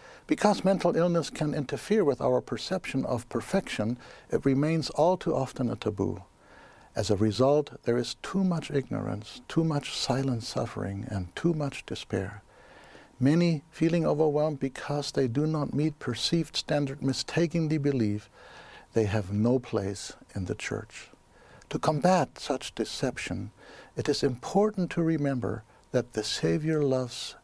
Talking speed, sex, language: 140 wpm, male, English